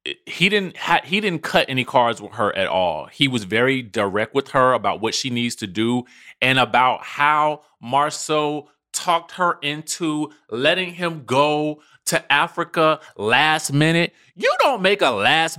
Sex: male